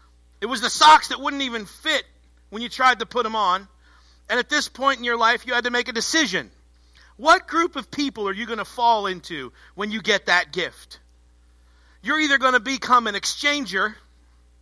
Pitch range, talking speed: 195-260 Hz, 205 wpm